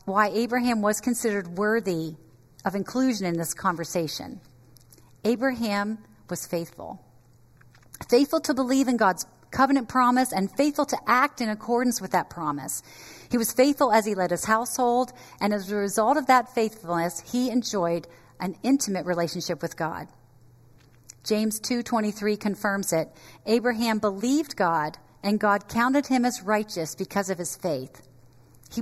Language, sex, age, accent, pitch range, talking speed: English, female, 40-59, American, 150-235 Hz, 145 wpm